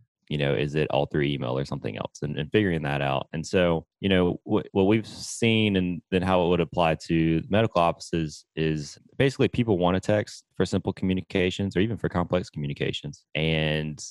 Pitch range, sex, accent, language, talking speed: 80-95 Hz, male, American, English, 195 wpm